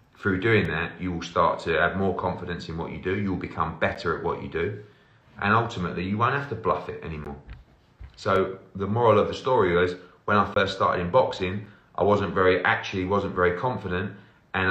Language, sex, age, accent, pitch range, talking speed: English, male, 30-49, British, 95-125 Hz, 210 wpm